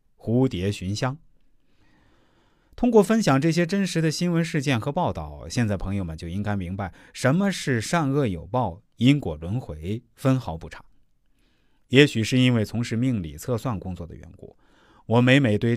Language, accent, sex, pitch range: Chinese, native, male, 105-160 Hz